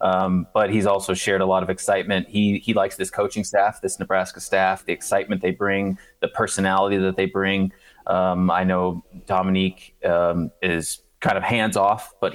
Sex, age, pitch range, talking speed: male, 20-39, 90-100 Hz, 185 wpm